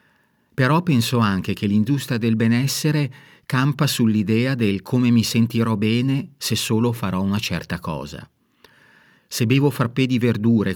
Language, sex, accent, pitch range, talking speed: Italian, male, native, 95-125 Hz, 140 wpm